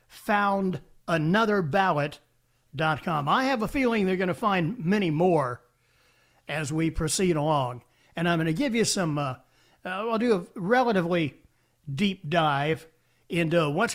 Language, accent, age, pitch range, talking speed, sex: English, American, 60-79, 150-215 Hz, 140 wpm, male